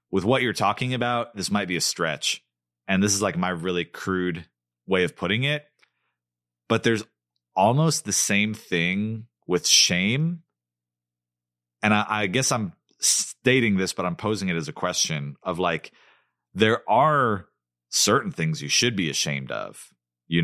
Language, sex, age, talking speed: English, male, 30-49, 160 wpm